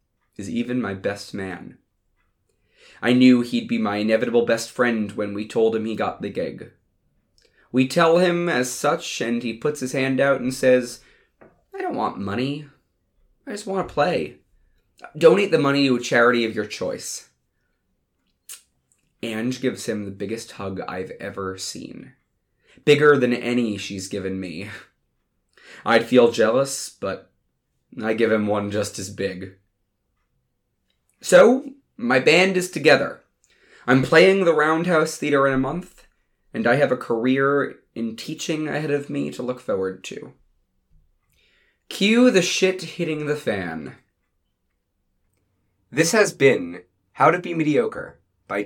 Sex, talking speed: male, 145 wpm